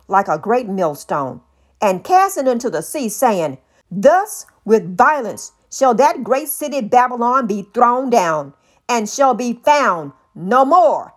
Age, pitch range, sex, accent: 50-69, 195-290 Hz, female, American